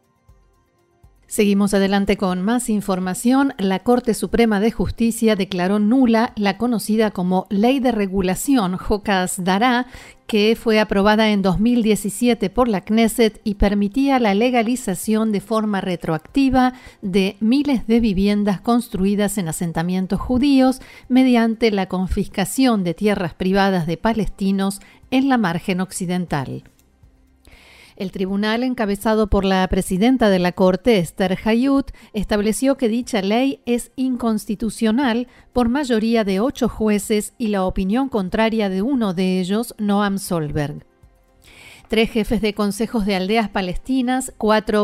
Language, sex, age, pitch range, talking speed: Spanish, female, 40-59, 195-235 Hz, 125 wpm